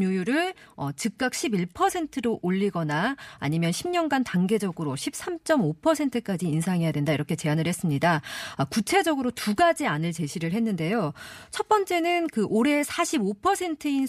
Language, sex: Korean, female